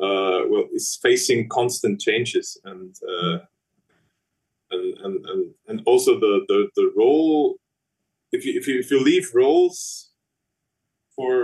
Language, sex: English, male